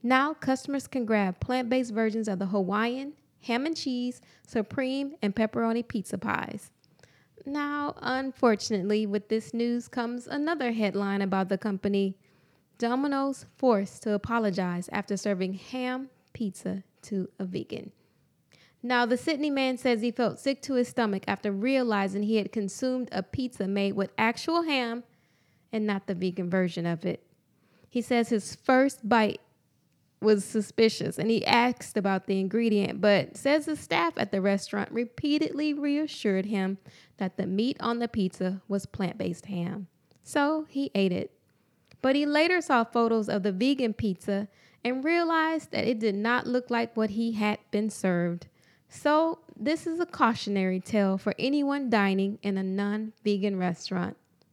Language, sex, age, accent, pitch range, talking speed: English, female, 20-39, American, 195-255 Hz, 155 wpm